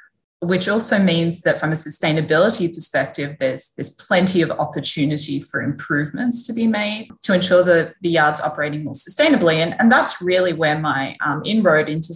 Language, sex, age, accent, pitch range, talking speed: English, female, 20-39, Australian, 145-175 Hz, 175 wpm